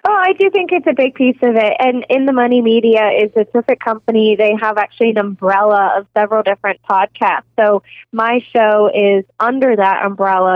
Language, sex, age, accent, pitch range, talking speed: English, female, 20-39, American, 200-235 Hz, 200 wpm